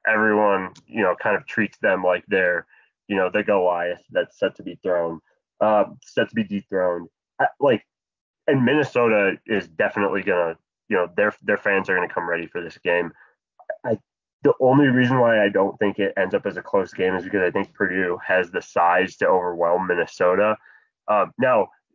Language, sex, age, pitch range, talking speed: English, male, 20-39, 95-115 Hz, 195 wpm